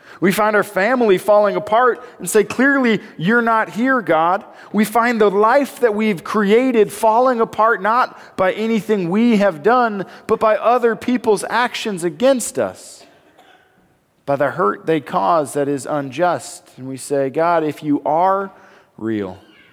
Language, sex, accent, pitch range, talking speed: English, male, American, 125-195 Hz, 155 wpm